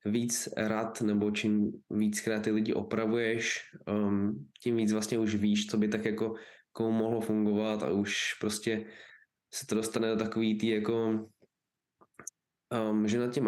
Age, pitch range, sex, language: 20-39, 105-115 Hz, male, Czech